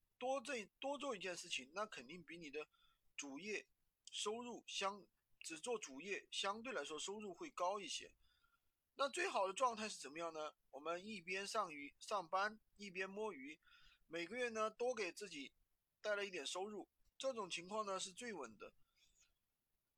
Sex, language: male, Chinese